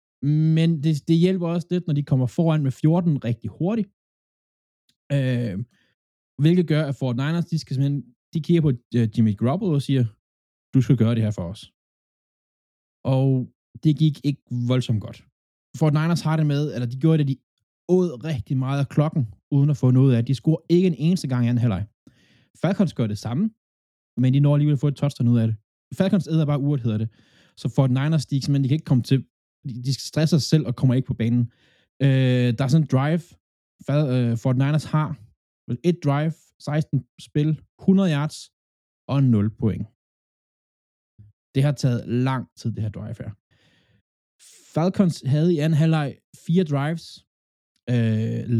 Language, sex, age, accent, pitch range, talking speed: Danish, male, 20-39, native, 120-155 Hz, 180 wpm